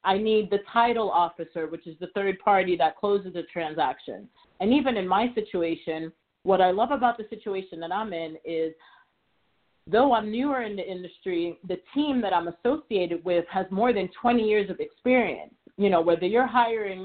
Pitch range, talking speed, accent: 185-240 Hz, 185 wpm, American